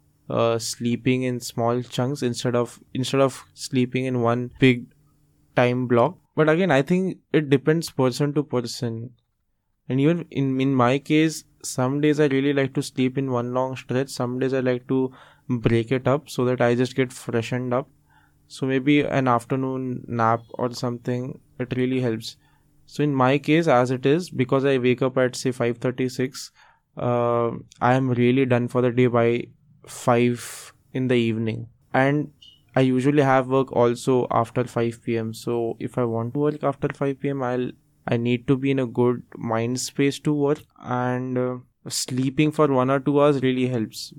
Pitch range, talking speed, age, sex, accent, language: 120-140 Hz, 180 wpm, 20-39, male, Indian, English